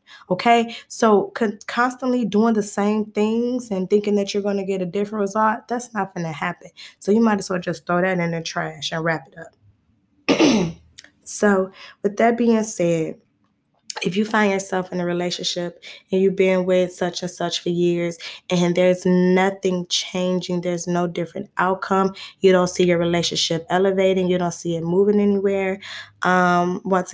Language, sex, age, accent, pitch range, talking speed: English, female, 10-29, American, 175-205 Hz, 175 wpm